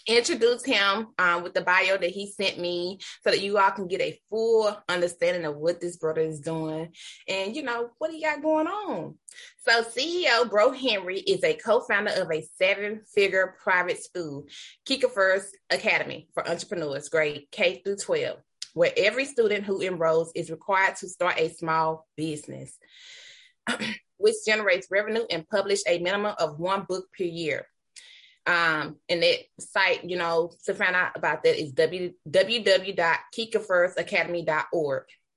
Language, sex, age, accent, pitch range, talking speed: English, female, 20-39, American, 175-245 Hz, 155 wpm